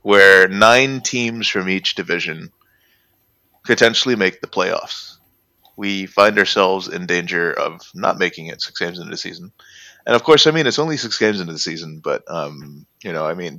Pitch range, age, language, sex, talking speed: 100-130 Hz, 30-49, English, male, 185 wpm